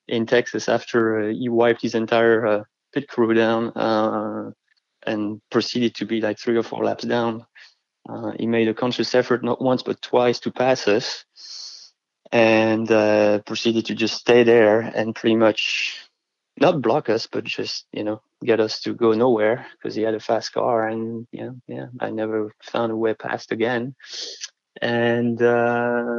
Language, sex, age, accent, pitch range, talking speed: English, male, 20-39, French, 110-120 Hz, 170 wpm